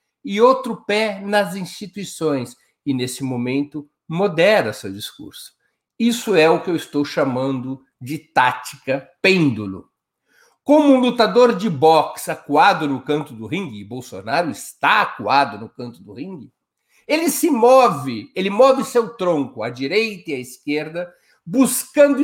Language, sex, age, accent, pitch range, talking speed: Portuguese, male, 50-69, Brazilian, 140-220 Hz, 140 wpm